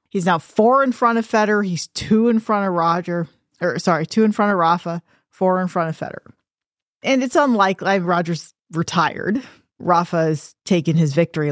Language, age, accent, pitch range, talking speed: English, 40-59, American, 160-220 Hz, 175 wpm